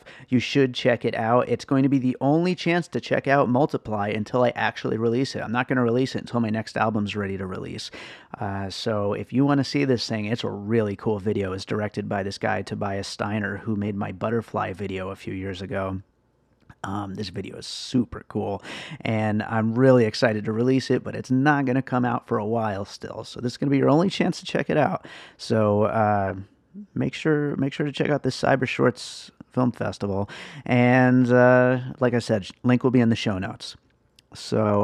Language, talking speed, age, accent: English, 220 wpm, 30-49, American